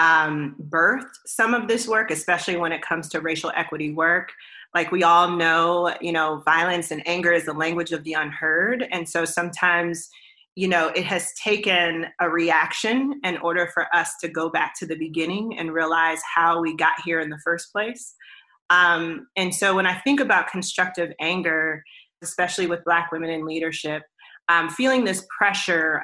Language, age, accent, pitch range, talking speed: English, 30-49, American, 165-195 Hz, 180 wpm